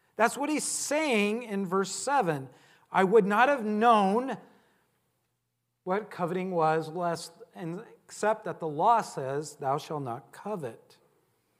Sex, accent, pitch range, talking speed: male, American, 160-215 Hz, 125 wpm